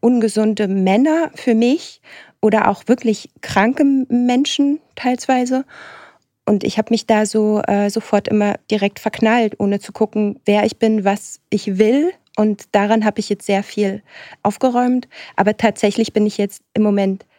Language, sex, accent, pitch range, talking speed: German, female, German, 205-235 Hz, 155 wpm